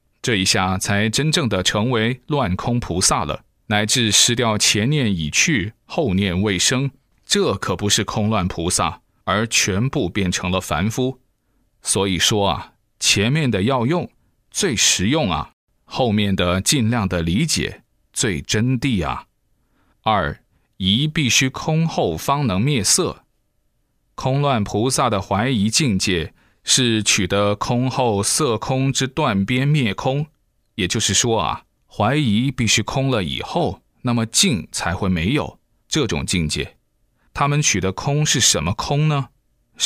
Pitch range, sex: 100-130 Hz, male